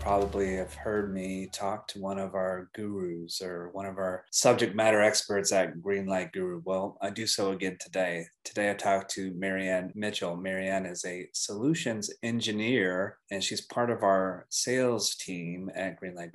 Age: 30-49